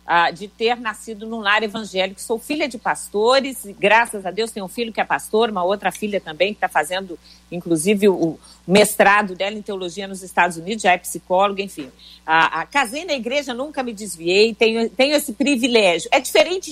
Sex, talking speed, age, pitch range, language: female, 195 wpm, 50-69, 210-280 Hz, Portuguese